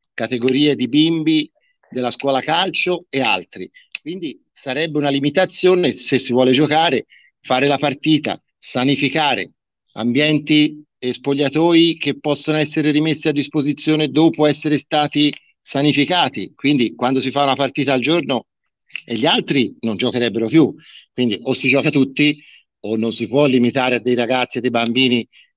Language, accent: Italian, native